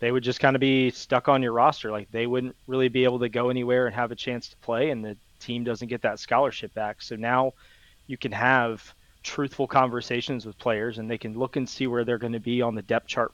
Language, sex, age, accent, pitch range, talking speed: English, male, 20-39, American, 115-130 Hz, 255 wpm